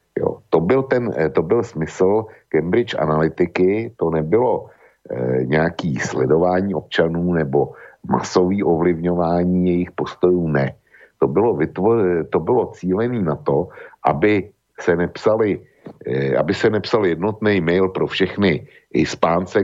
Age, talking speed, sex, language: 60-79, 105 wpm, male, Slovak